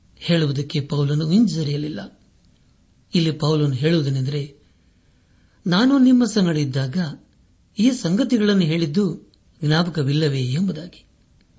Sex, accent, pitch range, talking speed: male, native, 140-175 Hz, 70 wpm